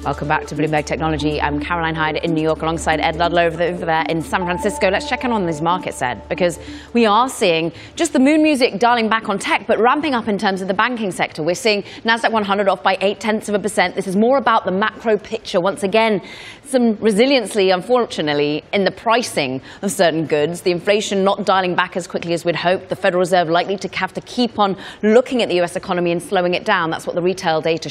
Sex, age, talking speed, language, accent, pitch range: female, 30-49, 235 wpm, English, British, 165-210 Hz